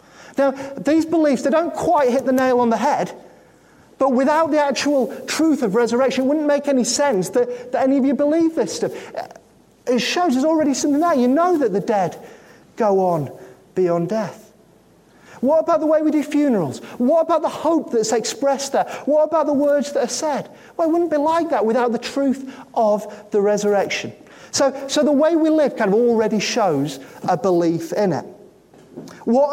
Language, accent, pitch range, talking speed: English, British, 200-290 Hz, 195 wpm